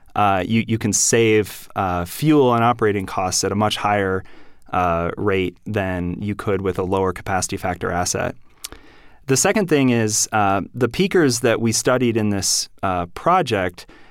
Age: 30-49